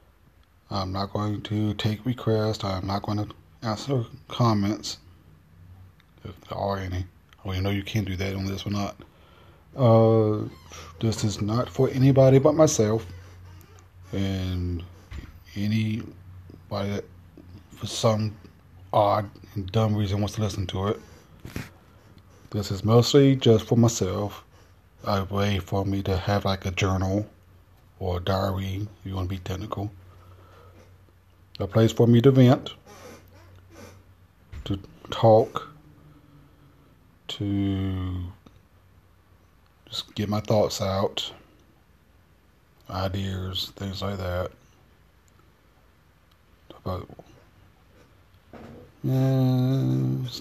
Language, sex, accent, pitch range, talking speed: English, male, American, 90-110 Hz, 110 wpm